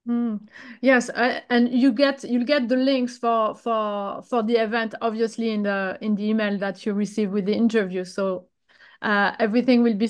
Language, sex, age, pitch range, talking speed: English, female, 30-49, 230-265 Hz, 190 wpm